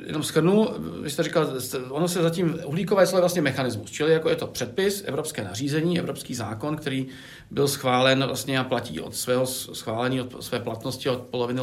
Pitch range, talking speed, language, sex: 125-165 Hz, 180 wpm, Czech, male